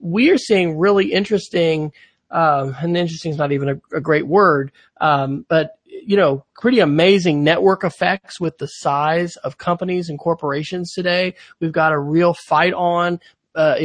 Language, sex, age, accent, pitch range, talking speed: English, male, 40-59, American, 150-180 Hz, 165 wpm